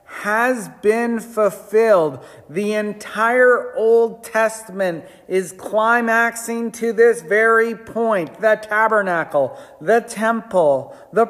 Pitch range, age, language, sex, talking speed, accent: 160-225 Hz, 40-59, English, male, 95 wpm, American